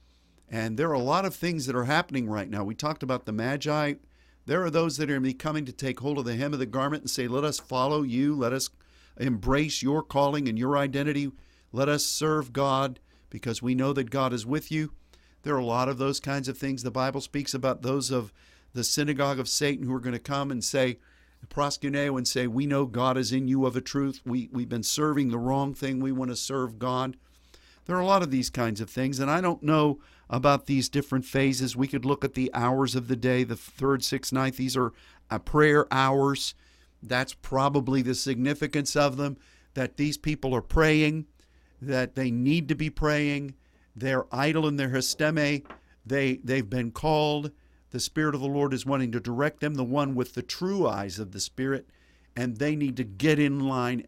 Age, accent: 50-69, American